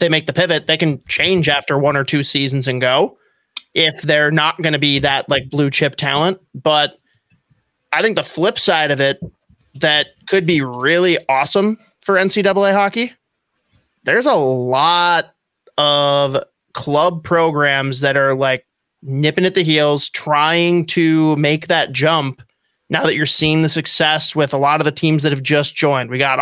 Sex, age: male, 30-49